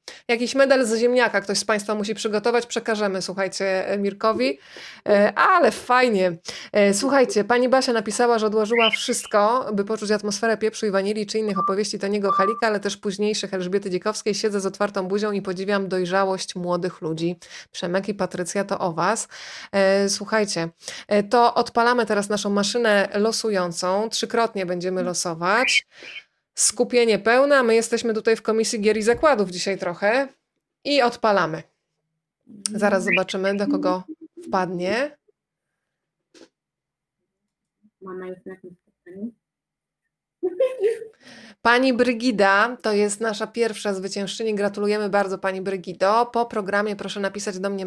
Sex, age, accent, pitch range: female, 20-39, native, 195-225 Hz